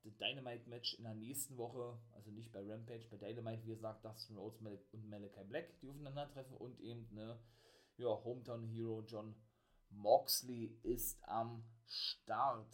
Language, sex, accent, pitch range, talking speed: German, male, German, 110-130 Hz, 155 wpm